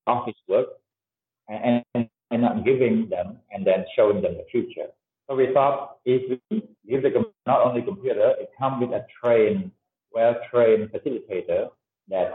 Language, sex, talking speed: English, male, 165 wpm